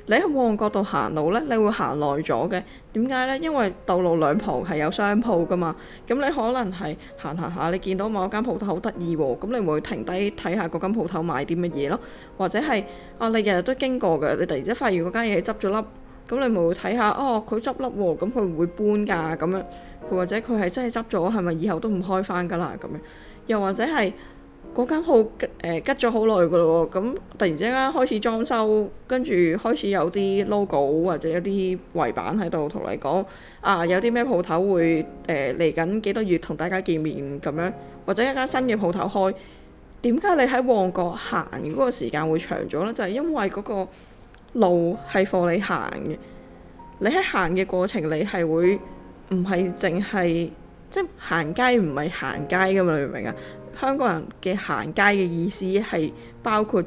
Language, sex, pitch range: Chinese, female, 170-225 Hz